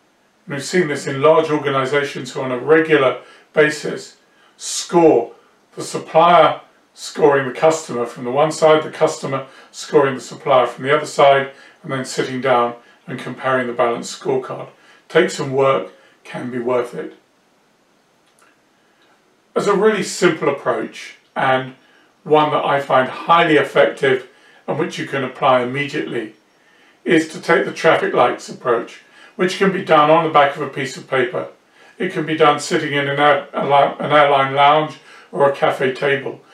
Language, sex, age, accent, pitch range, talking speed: English, male, 40-59, British, 135-160 Hz, 160 wpm